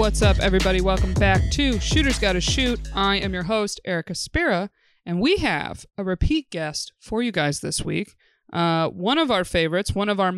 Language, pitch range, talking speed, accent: English, 170-215 Hz, 200 wpm, American